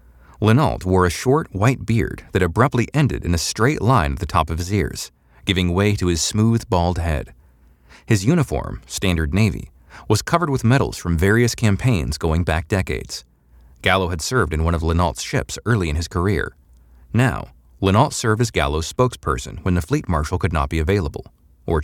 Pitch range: 75-110 Hz